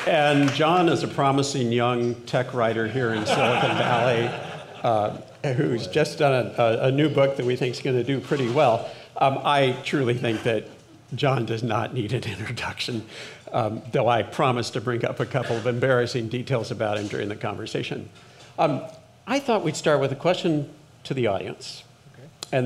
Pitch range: 120-145 Hz